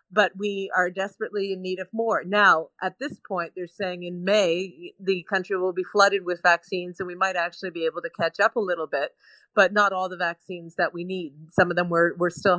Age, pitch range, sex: 40-59, 180-215 Hz, female